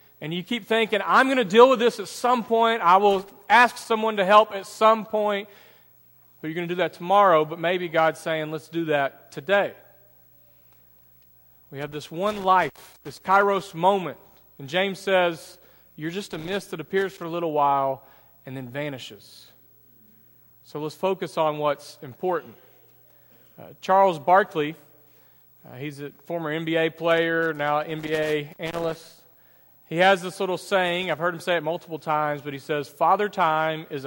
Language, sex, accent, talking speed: English, male, American, 170 wpm